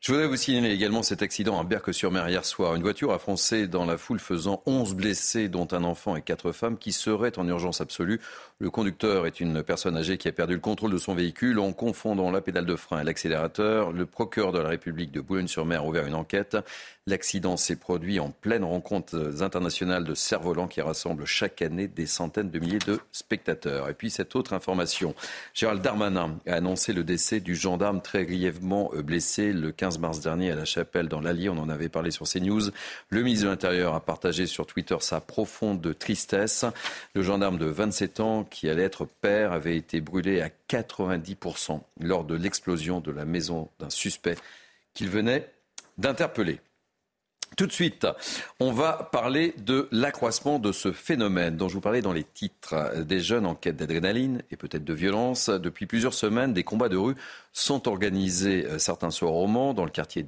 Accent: French